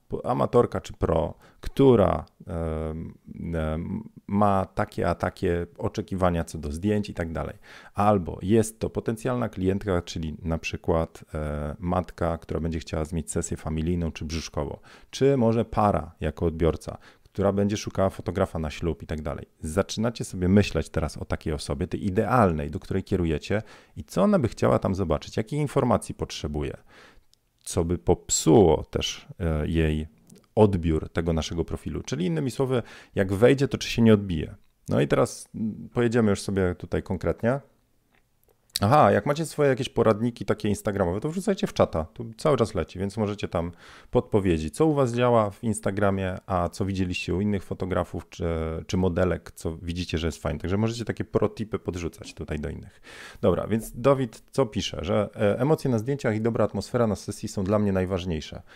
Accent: native